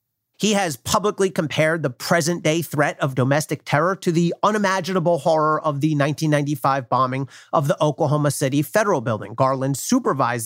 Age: 40-59